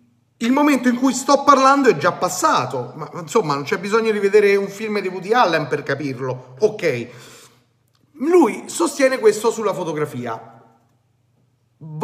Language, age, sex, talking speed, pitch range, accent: Italian, 30-49, male, 150 wpm, 150-220 Hz, native